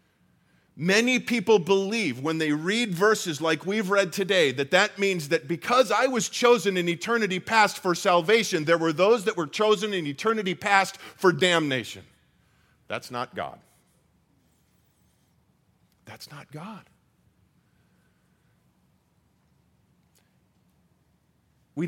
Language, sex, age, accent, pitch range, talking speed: English, male, 50-69, American, 140-195 Hz, 115 wpm